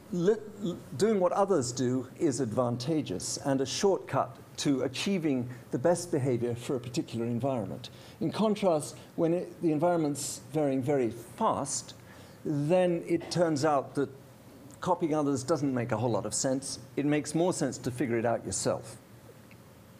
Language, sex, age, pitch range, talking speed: English, male, 50-69, 130-165 Hz, 145 wpm